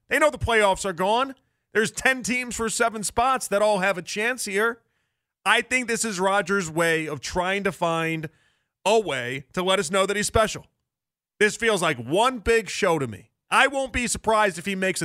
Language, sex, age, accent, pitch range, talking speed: English, male, 40-59, American, 180-230 Hz, 205 wpm